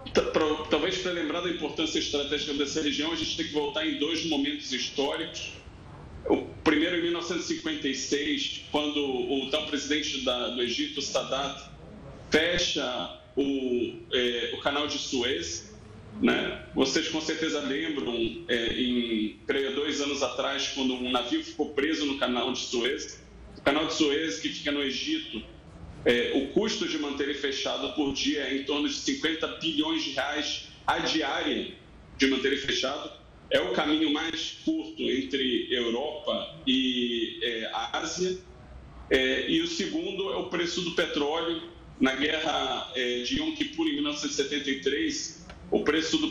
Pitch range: 135-180 Hz